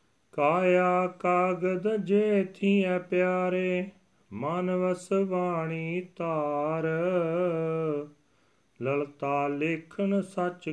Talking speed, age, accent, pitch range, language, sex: 55 wpm, 40-59, Indian, 125-160 Hz, English, male